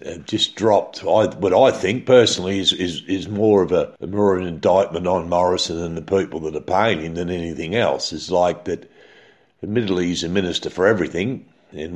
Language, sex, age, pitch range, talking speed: English, male, 60-79, 85-135 Hz, 200 wpm